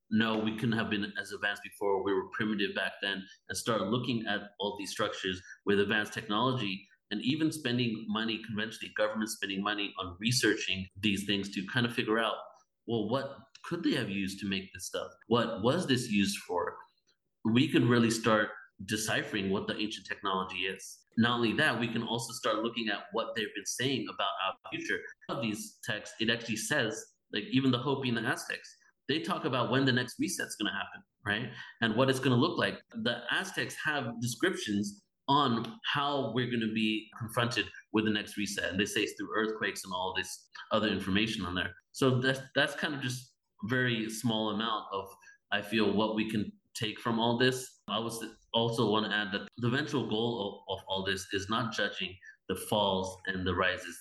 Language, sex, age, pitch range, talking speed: English, male, 30-49, 100-120 Hz, 200 wpm